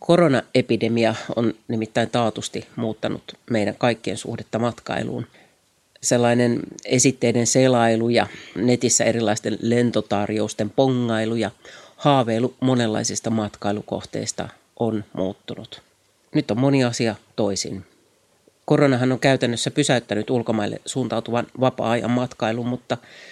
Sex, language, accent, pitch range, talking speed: male, Finnish, native, 110-135 Hz, 95 wpm